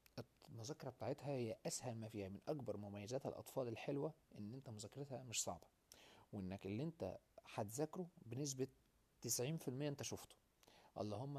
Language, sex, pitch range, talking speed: Arabic, male, 105-140 Hz, 140 wpm